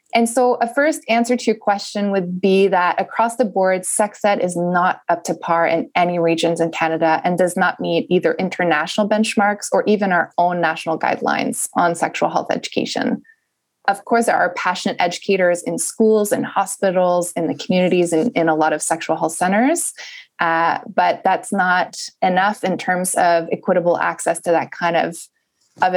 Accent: American